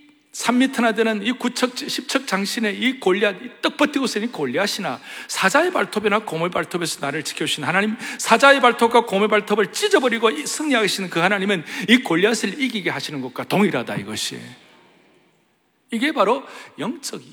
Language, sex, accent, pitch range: Korean, male, native, 175-245 Hz